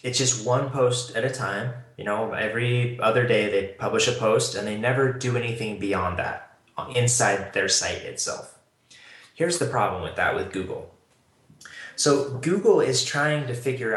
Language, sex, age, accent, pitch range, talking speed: English, male, 20-39, American, 105-135 Hz, 170 wpm